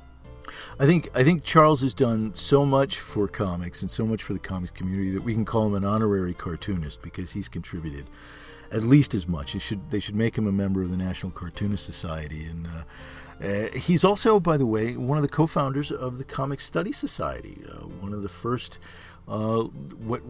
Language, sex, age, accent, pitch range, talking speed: English, male, 50-69, American, 90-125 Hz, 205 wpm